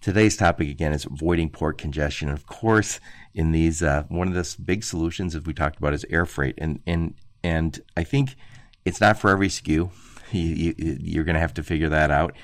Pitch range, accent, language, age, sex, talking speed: 75-90 Hz, American, English, 50-69, male, 210 wpm